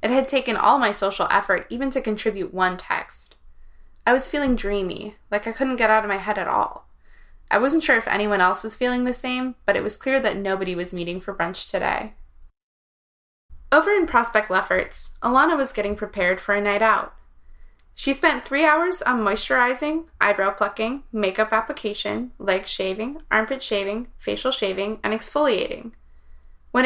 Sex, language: female, English